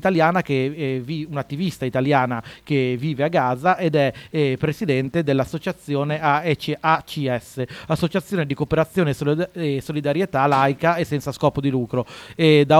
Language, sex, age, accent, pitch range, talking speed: Italian, male, 30-49, native, 135-165 Hz, 135 wpm